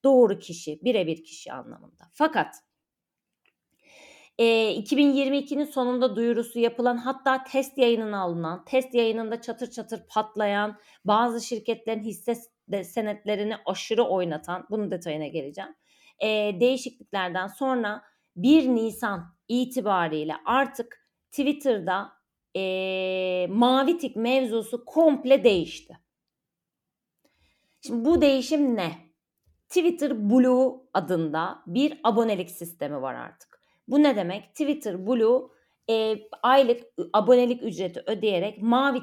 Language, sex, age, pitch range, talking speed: Turkish, female, 30-49, 190-260 Hz, 100 wpm